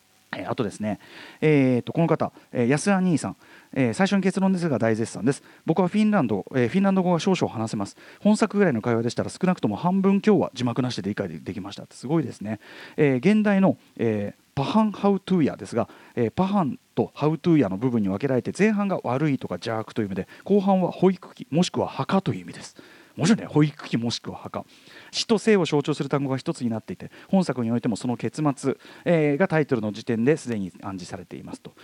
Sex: male